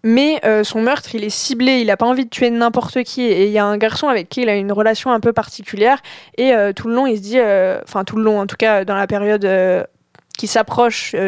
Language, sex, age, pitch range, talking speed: French, female, 20-39, 210-245 Hz, 275 wpm